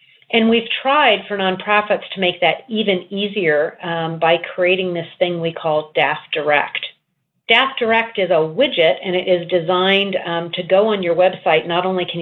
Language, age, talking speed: English, 40-59, 180 wpm